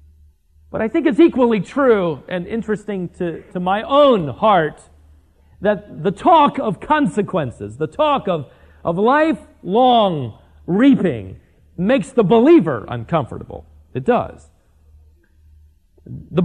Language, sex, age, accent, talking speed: English, male, 40-59, American, 115 wpm